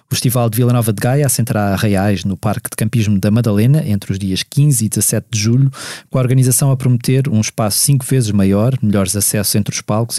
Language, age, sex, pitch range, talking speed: Portuguese, 20-39, male, 110-130 Hz, 230 wpm